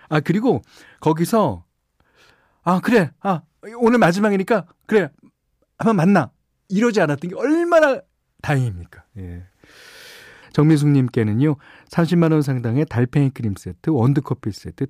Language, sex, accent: Korean, male, native